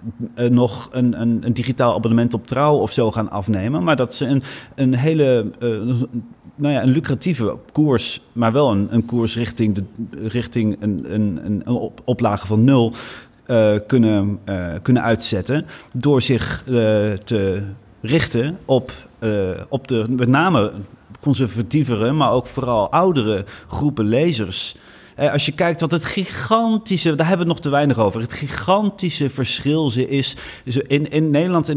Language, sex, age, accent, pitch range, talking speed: Dutch, male, 30-49, Dutch, 115-145 Hz, 155 wpm